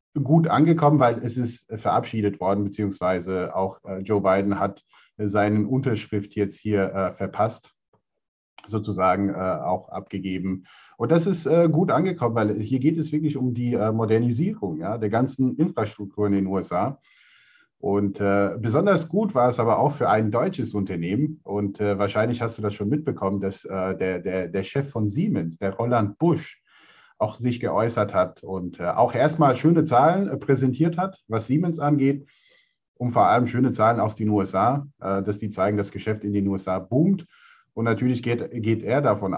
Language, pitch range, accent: German, 100-140 Hz, German